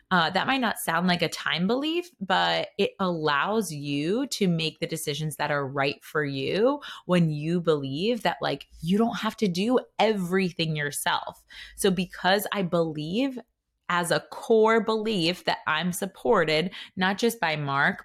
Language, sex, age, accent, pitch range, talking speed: English, female, 20-39, American, 150-200 Hz, 165 wpm